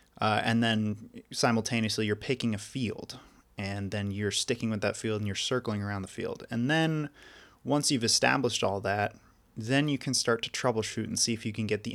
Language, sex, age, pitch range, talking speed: English, male, 20-39, 105-120 Hz, 205 wpm